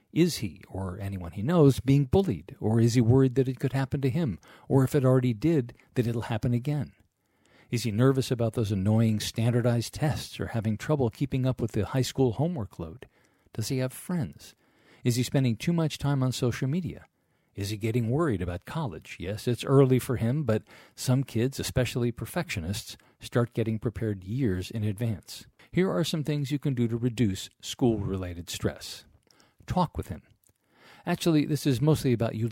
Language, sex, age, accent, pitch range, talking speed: English, male, 50-69, American, 105-135 Hz, 185 wpm